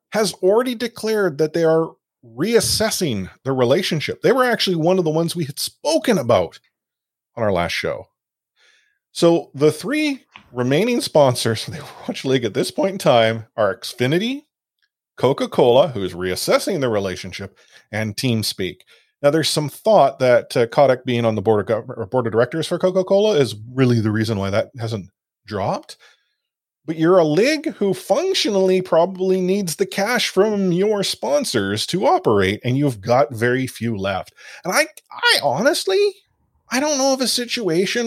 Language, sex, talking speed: English, male, 165 wpm